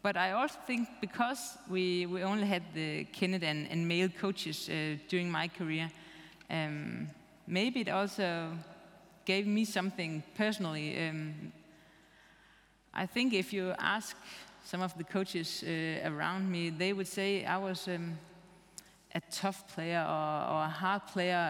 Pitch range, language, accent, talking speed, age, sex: 170-205 Hz, English, Danish, 150 wpm, 30-49, female